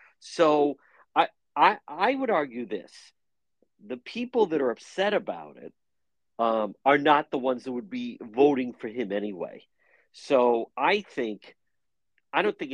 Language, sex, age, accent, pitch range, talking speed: English, male, 50-69, American, 110-155 Hz, 150 wpm